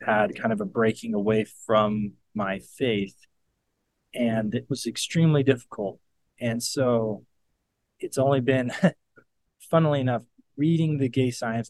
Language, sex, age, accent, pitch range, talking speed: English, male, 20-39, American, 115-150 Hz, 130 wpm